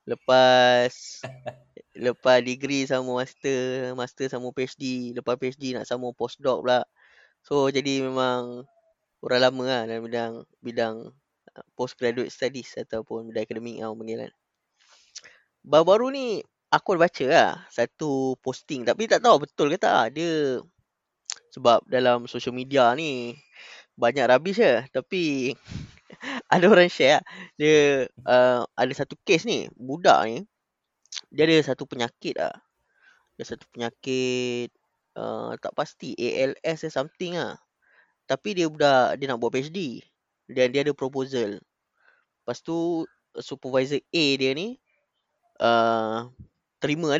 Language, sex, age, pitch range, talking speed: Malay, female, 20-39, 125-145 Hz, 125 wpm